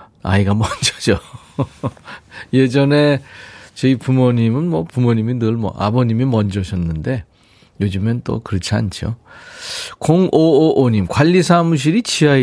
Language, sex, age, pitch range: Korean, male, 40-59, 100-140 Hz